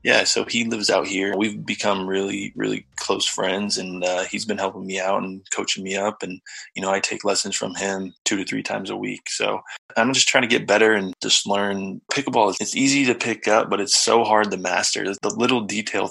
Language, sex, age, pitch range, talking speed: English, male, 20-39, 95-110 Hz, 240 wpm